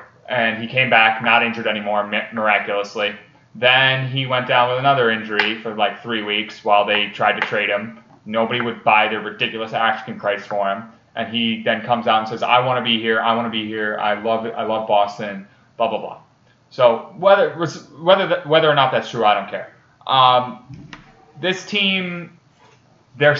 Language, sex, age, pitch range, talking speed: English, male, 20-39, 115-140 Hz, 185 wpm